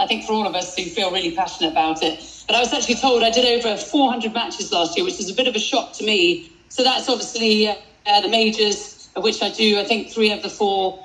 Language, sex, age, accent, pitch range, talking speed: English, female, 40-59, British, 180-235 Hz, 270 wpm